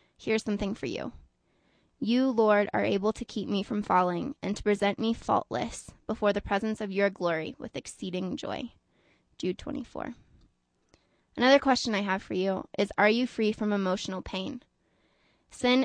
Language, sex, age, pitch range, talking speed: English, female, 20-39, 190-220 Hz, 165 wpm